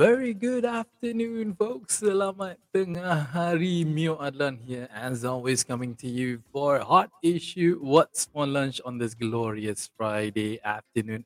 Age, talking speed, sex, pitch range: 20-39, 140 wpm, male, 110-140 Hz